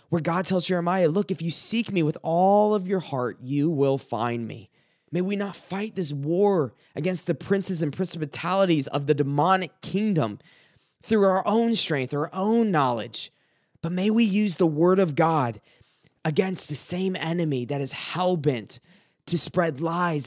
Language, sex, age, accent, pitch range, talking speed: English, male, 20-39, American, 135-175 Hz, 170 wpm